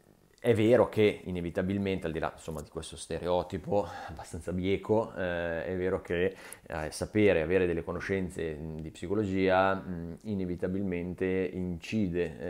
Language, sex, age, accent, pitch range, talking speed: Italian, male, 20-39, native, 80-95 Hz, 130 wpm